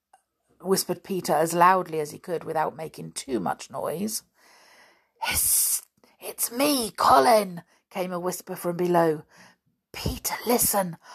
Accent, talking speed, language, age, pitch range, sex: British, 125 wpm, English, 50-69, 165-240 Hz, female